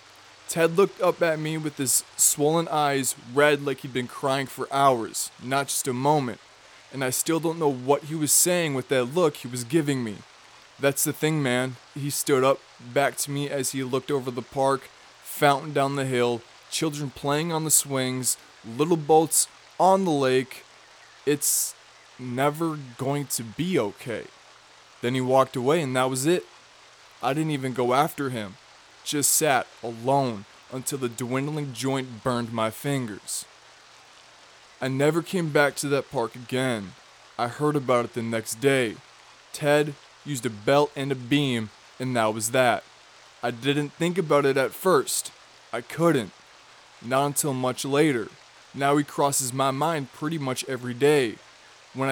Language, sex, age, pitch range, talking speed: English, male, 20-39, 125-150 Hz, 165 wpm